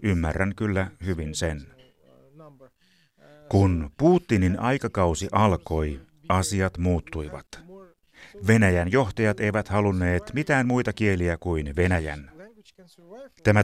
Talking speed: 90 wpm